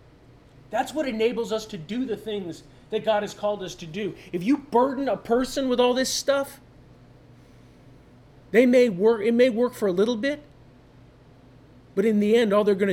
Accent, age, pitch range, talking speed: American, 40-59, 130-220 Hz, 190 wpm